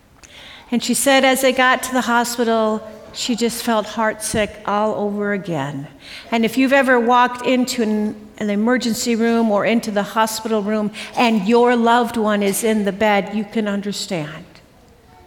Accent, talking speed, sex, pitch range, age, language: American, 165 wpm, female, 220-265 Hz, 50-69, English